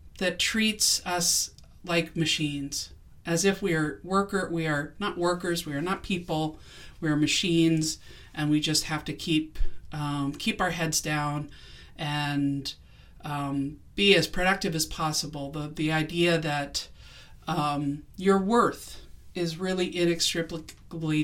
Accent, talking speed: American, 140 wpm